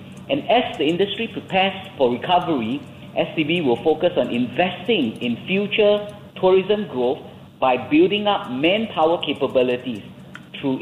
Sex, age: male, 50-69